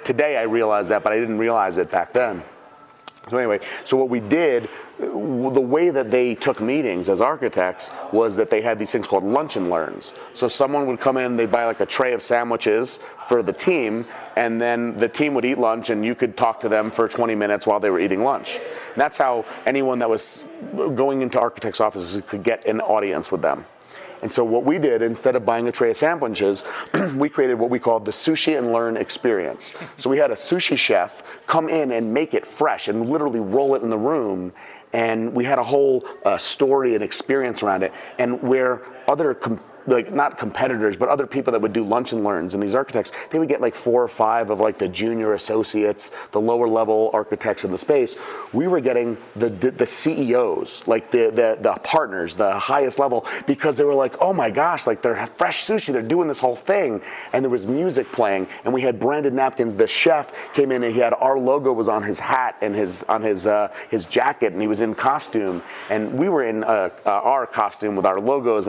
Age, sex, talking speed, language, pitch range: 30-49, male, 220 wpm, English, 110-135 Hz